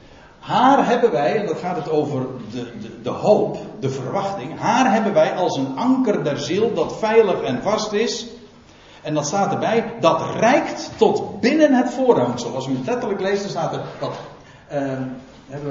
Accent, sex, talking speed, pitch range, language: Dutch, male, 180 wpm, 155-250 Hz, Dutch